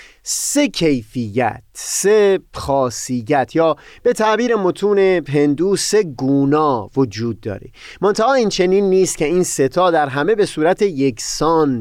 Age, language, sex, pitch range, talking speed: 30-49, Persian, male, 130-200 Hz, 125 wpm